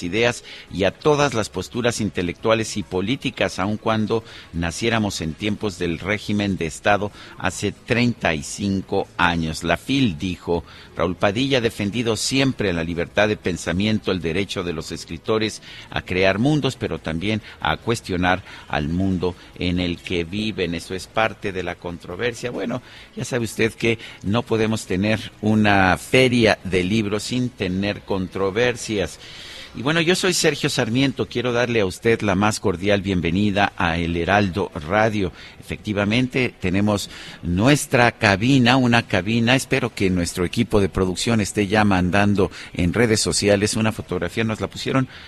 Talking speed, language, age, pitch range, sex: 150 wpm, Spanish, 50-69, 90-115 Hz, male